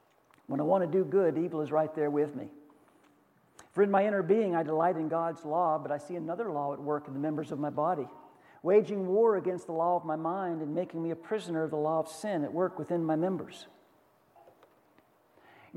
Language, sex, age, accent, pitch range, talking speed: English, male, 50-69, American, 165-225 Hz, 225 wpm